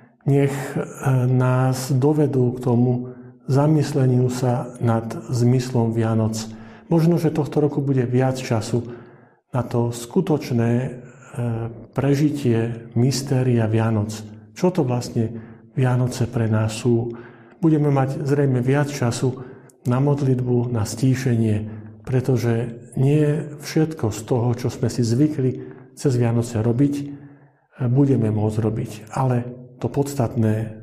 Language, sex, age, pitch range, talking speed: Slovak, male, 50-69, 115-135 Hz, 110 wpm